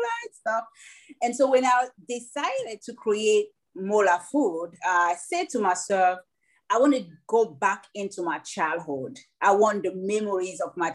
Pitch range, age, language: 180-255 Hz, 30-49, English